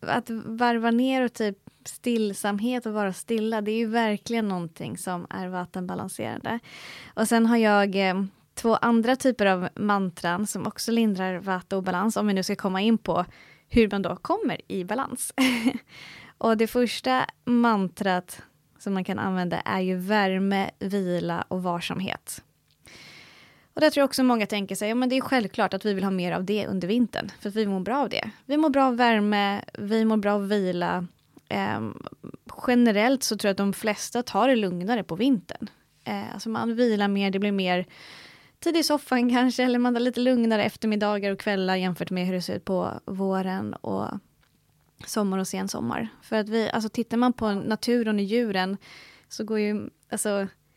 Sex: female